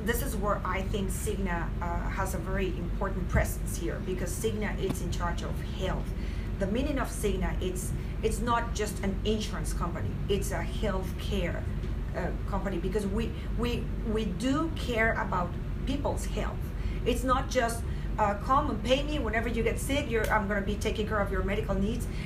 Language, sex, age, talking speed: English, female, 40-59, 185 wpm